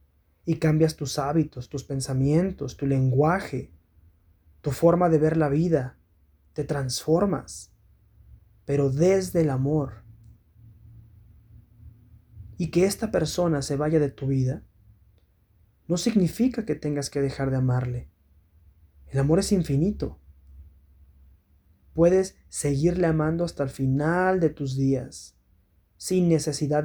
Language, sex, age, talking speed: Spanish, male, 20-39, 115 wpm